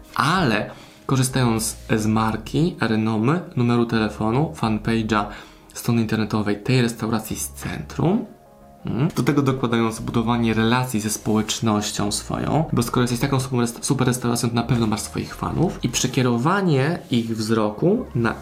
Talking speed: 125 wpm